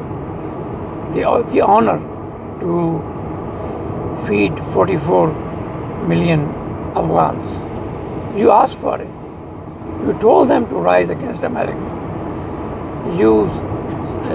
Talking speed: 85 wpm